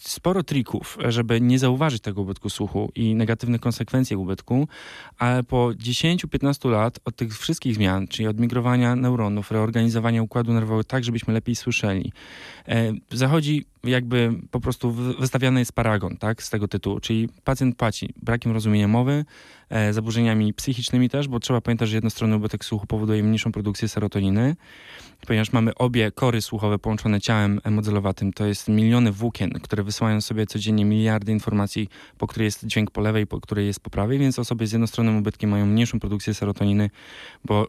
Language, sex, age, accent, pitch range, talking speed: Polish, male, 20-39, native, 105-125 Hz, 160 wpm